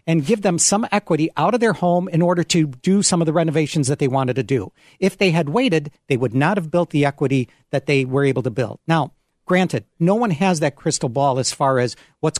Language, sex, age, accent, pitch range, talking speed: English, male, 50-69, American, 135-185 Hz, 245 wpm